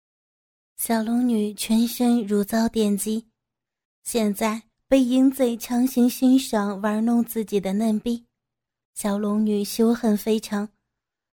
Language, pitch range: Chinese, 210-240 Hz